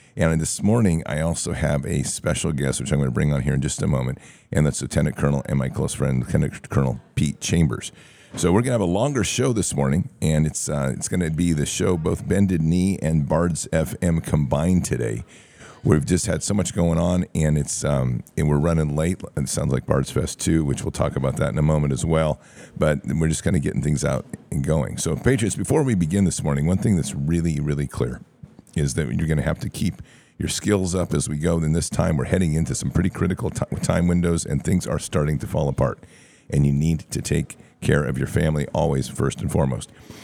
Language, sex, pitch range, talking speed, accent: English, male, 75-90 Hz, 230 wpm, American